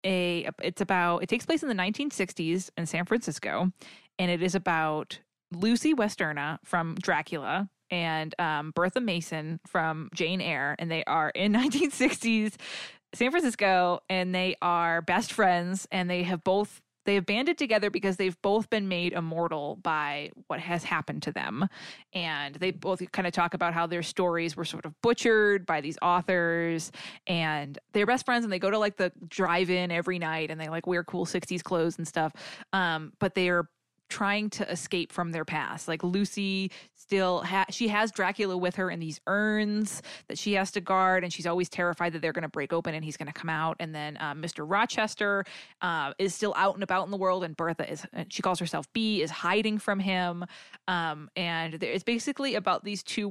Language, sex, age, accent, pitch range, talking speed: English, female, 20-39, American, 165-195 Hz, 195 wpm